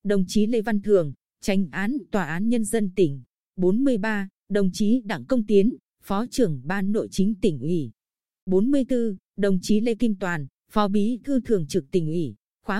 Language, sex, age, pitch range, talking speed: Vietnamese, female, 20-39, 185-230 Hz, 185 wpm